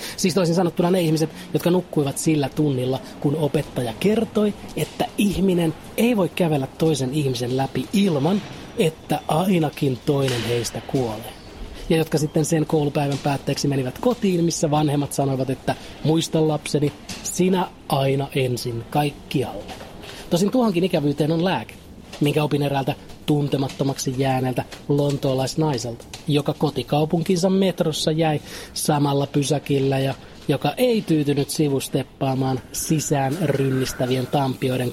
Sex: male